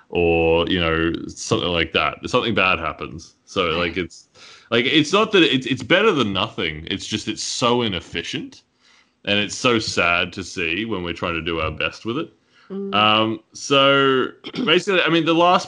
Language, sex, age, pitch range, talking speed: English, male, 20-39, 90-110 Hz, 185 wpm